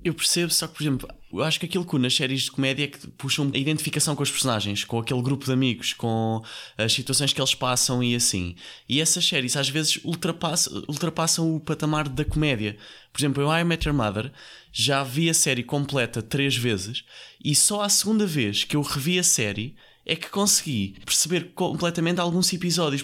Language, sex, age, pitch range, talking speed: Portuguese, male, 20-39, 130-160 Hz, 205 wpm